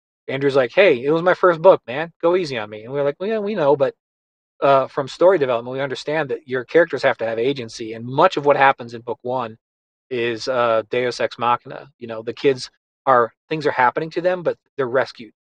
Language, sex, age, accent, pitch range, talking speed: English, male, 30-49, American, 115-145 Hz, 230 wpm